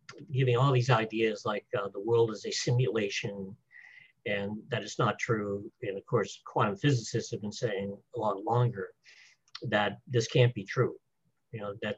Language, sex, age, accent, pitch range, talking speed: English, male, 50-69, American, 115-140 Hz, 175 wpm